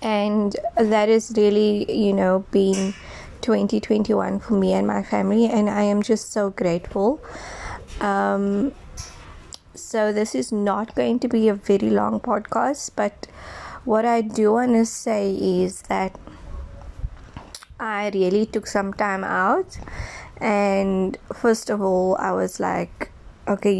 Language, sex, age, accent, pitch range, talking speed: English, female, 20-39, Indian, 180-215 Hz, 135 wpm